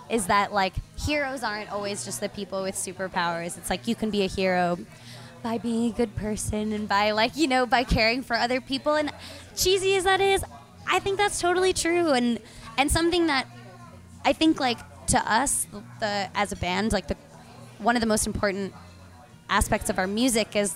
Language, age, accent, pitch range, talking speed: English, 20-39, American, 200-255 Hz, 195 wpm